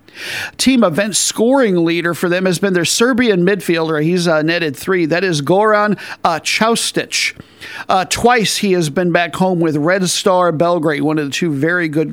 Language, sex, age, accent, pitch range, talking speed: English, male, 50-69, American, 165-205 Hz, 185 wpm